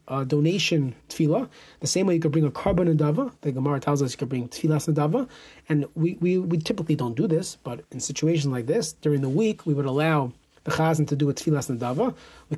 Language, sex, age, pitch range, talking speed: English, male, 30-49, 140-180 Hz, 245 wpm